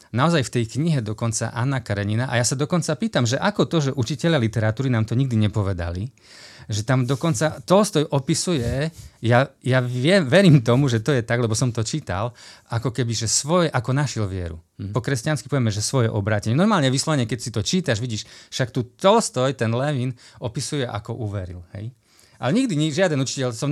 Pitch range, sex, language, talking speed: 110-140 Hz, male, Slovak, 190 wpm